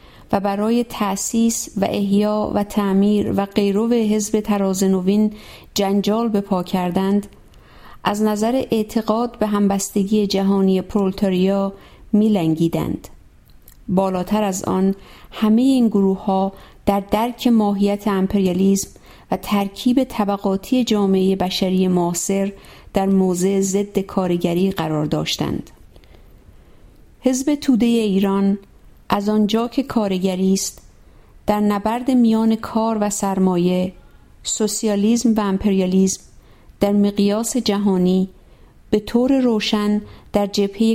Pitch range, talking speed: 190-215 Hz, 100 wpm